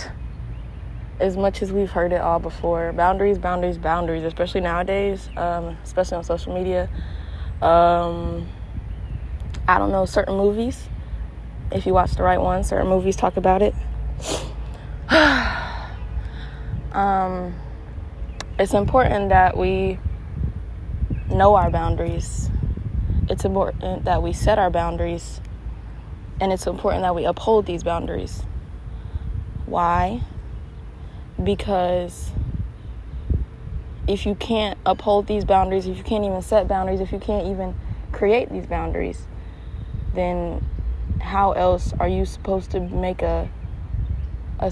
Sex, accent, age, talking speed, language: female, American, 20-39, 120 wpm, English